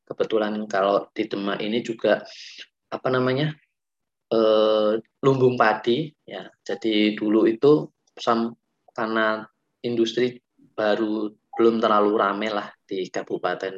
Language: Indonesian